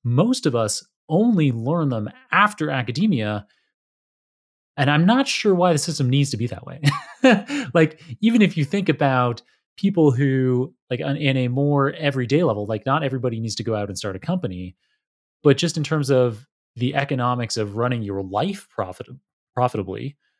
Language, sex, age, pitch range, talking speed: English, male, 30-49, 110-145 Hz, 170 wpm